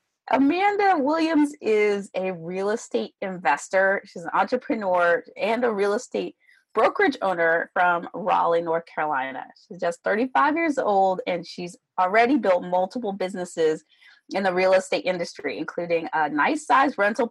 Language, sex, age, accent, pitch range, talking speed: English, female, 30-49, American, 170-235 Hz, 140 wpm